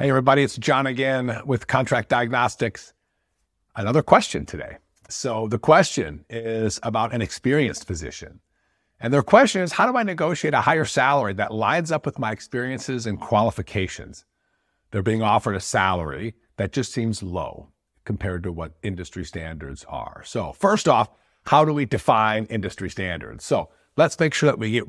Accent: American